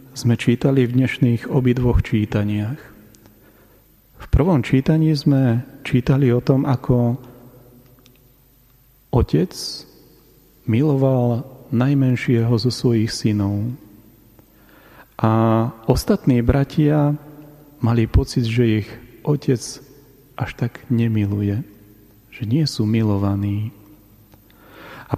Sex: male